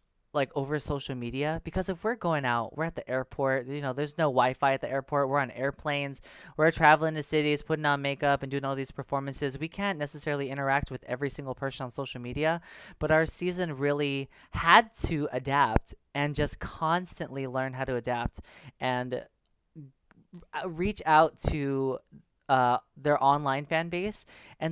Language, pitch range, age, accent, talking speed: English, 130-150 Hz, 20-39, American, 175 wpm